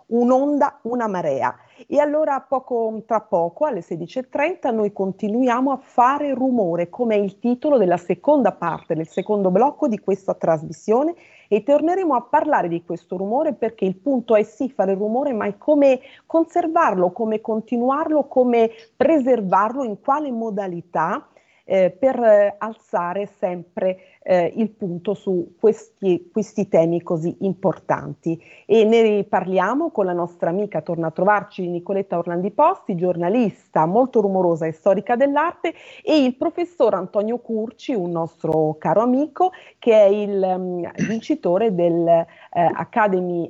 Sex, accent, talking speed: female, native, 140 wpm